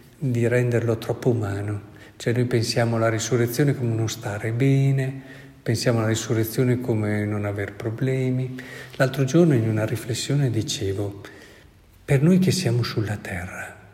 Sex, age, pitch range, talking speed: male, 50-69, 110-135 Hz, 140 wpm